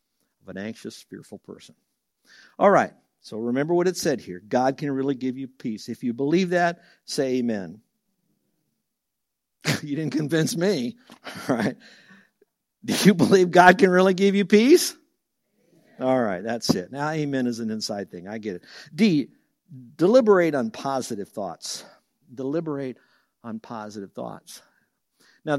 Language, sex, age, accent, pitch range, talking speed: English, male, 60-79, American, 130-175 Hz, 145 wpm